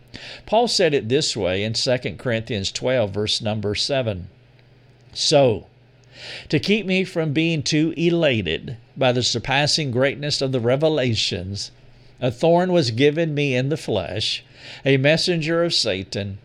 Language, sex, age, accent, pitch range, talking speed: English, male, 50-69, American, 120-150 Hz, 140 wpm